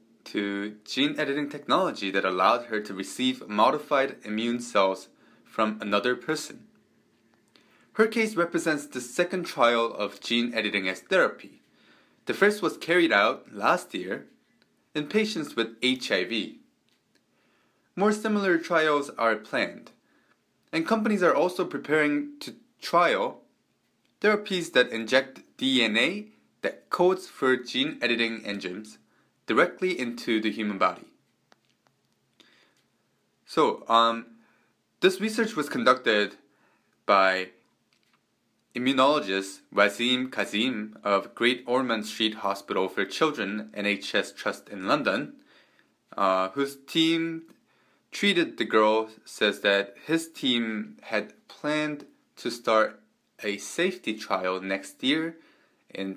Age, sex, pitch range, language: 30-49, male, 105-165 Hz, Korean